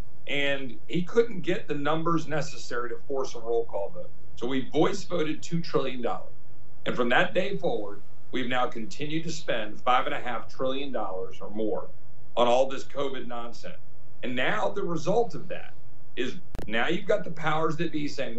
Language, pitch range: English, 135-175 Hz